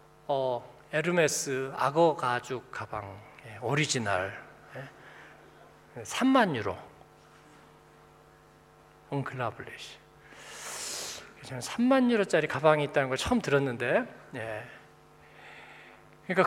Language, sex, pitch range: Korean, male, 135-175 Hz